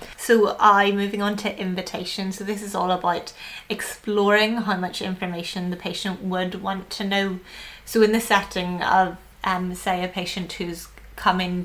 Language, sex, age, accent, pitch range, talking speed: English, female, 20-39, British, 180-215 Hz, 165 wpm